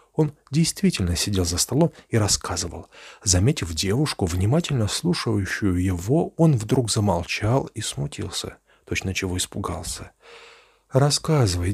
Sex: male